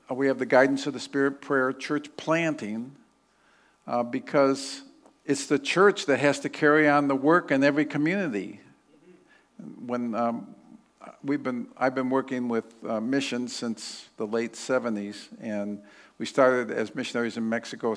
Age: 50-69